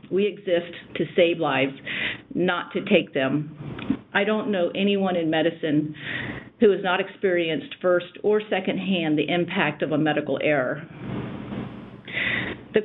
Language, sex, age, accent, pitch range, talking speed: English, female, 50-69, American, 160-200 Hz, 140 wpm